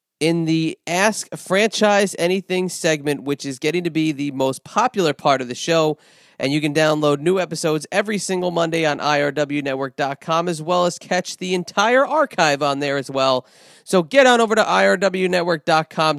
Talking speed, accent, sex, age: 170 wpm, American, male, 40-59